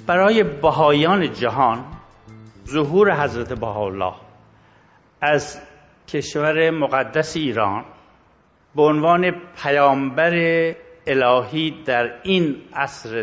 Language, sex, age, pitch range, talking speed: Persian, male, 60-79, 120-155 Hz, 75 wpm